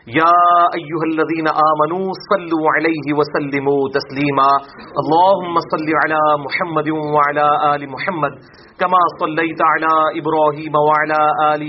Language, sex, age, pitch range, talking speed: English, male, 40-59, 140-165 Hz, 110 wpm